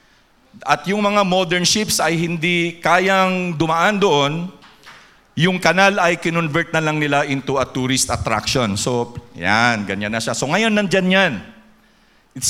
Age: 50-69